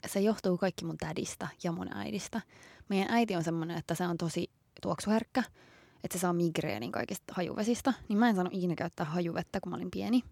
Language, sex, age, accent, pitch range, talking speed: Finnish, female, 20-39, native, 165-195 Hz, 200 wpm